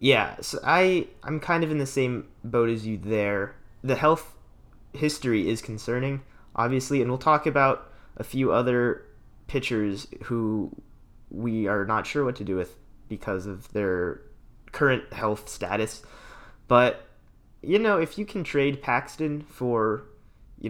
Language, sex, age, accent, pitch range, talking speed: English, male, 20-39, American, 100-120 Hz, 150 wpm